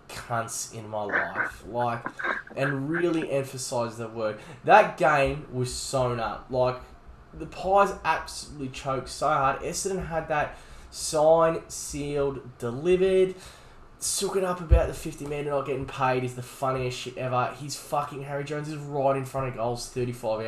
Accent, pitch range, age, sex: Australian, 125-175 Hz, 10-29, male